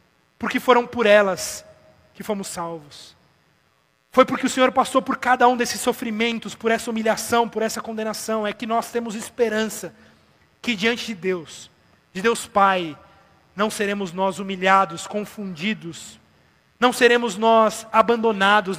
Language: Portuguese